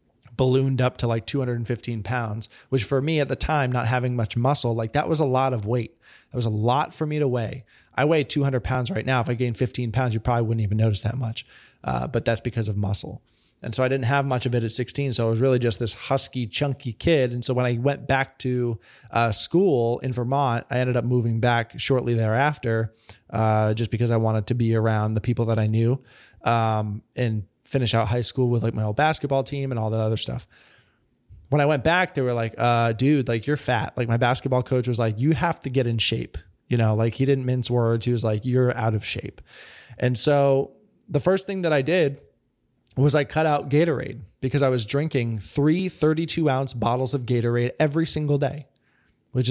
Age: 20-39